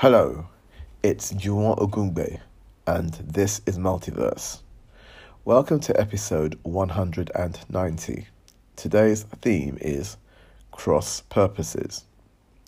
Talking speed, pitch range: 75 wpm, 85-110 Hz